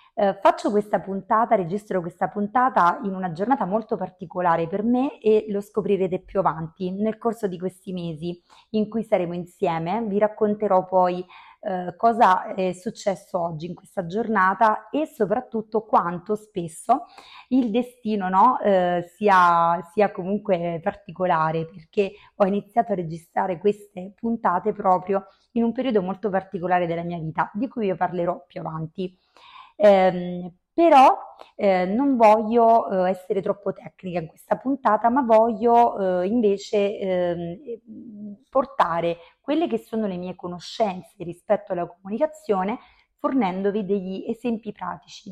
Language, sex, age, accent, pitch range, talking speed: Italian, female, 30-49, native, 180-225 Hz, 135 wpm